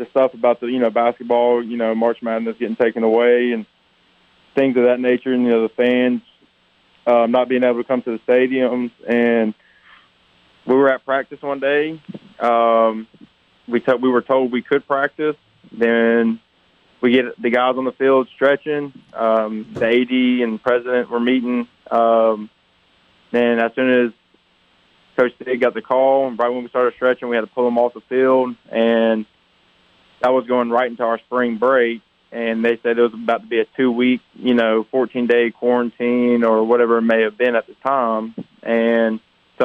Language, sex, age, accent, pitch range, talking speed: English, male, 20-39, American, 115-125 Hz, 190 wpm